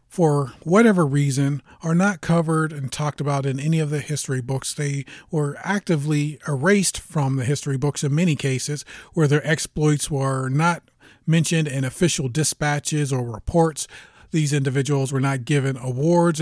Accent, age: American, 30-49